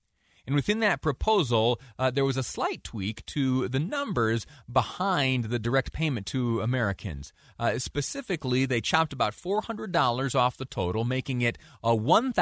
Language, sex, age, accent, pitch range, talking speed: English, male, 30-49, American, 95-135 Hz, 150 wpm